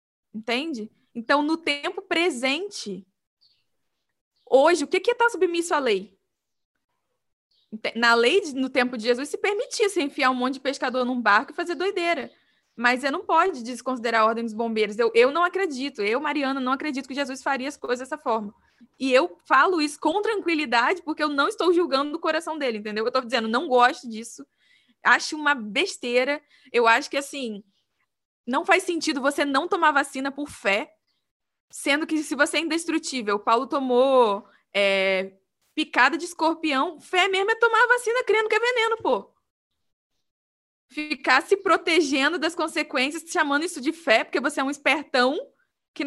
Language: Portuguese